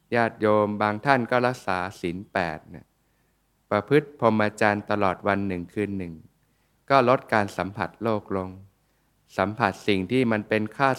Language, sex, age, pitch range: Thai, male, 20-39, 100-120 Hz